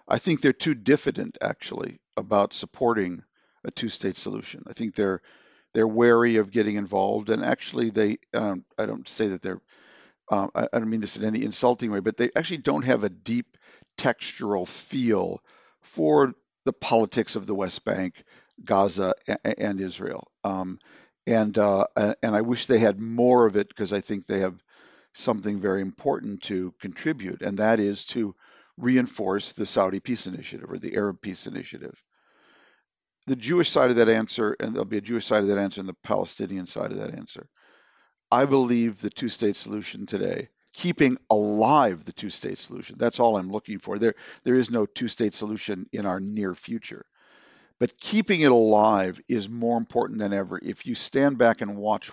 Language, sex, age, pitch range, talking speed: English, male, 50-69, 100-120 Hz, 180 wpm